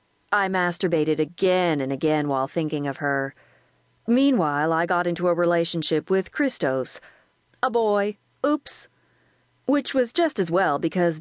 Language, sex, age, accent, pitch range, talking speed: English, female, 40-59, American, 155-195 Hz, 140 wpm